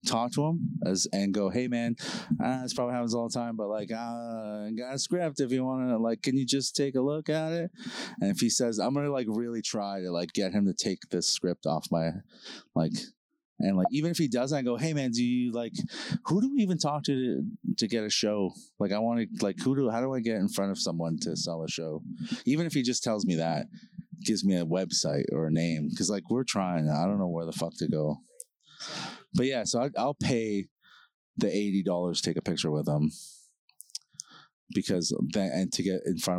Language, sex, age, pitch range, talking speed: English, male, 30-49, 100-165 Hz, 235 wpm